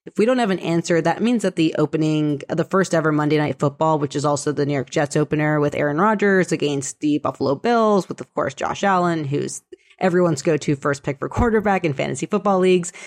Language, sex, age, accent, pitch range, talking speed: English, female, 30-49, American, 155-190 Hz, 225 wpm